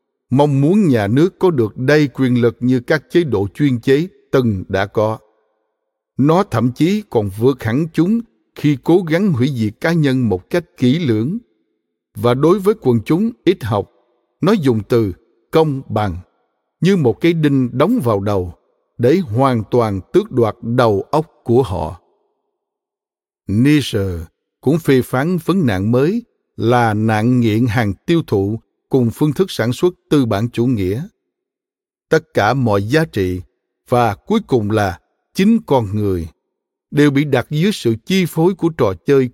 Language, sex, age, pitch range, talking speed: Vietnamese, male, 60-79, 115-165 Hz, 165 wpm